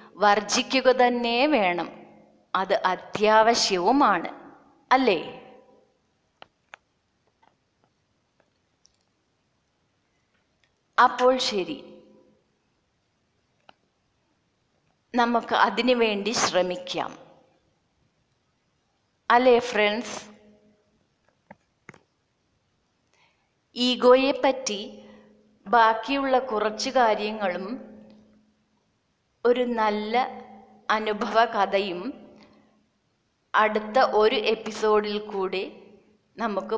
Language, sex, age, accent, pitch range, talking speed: Malayalam, female, 30-49, native, 195-235 Hz, 45 wpm